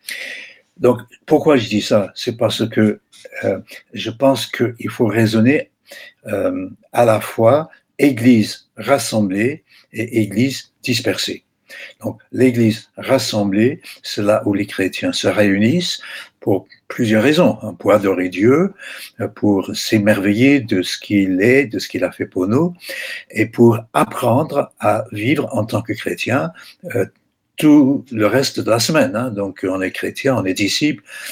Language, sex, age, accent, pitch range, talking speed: French, male, 60-79, French, 105-130 Hz, 145 wpm